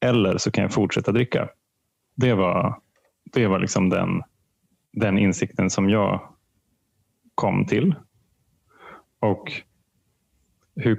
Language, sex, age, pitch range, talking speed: Swedish, male, 30-49, 95-120 Hz, 110 wpm